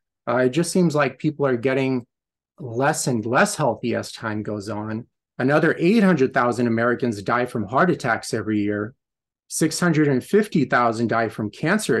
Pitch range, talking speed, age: 115-160 Hz, 145 wpm, 30-49